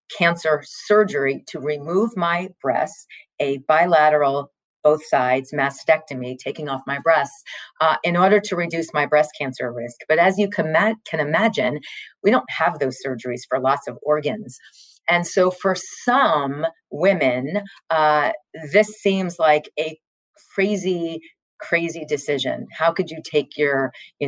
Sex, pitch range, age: female, 145-190 Hz, 40-59